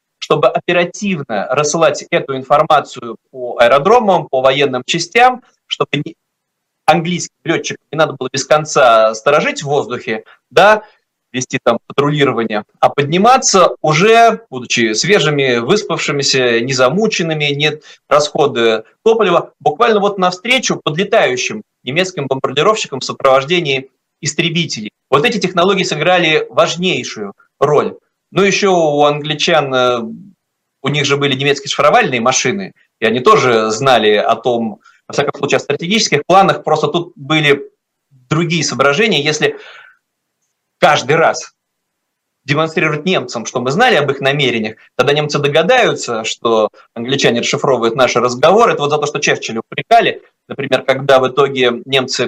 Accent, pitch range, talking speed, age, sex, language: native, 135-190 Hz, 125 wpm, 30-49, male, Russian